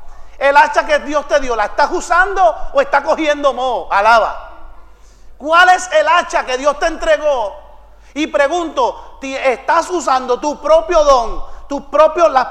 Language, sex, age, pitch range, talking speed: English, male, 40-59, 245-315 Hz, 155 wpm